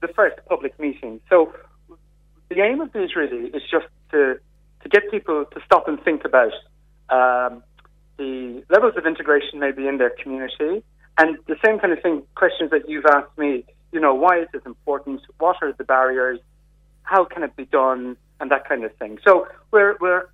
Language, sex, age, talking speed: English, male, 30-49, 190 wpm